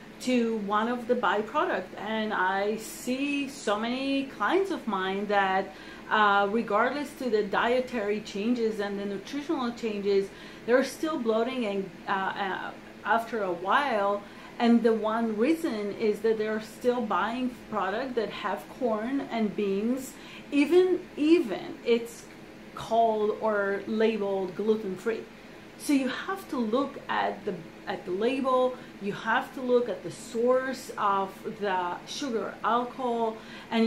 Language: English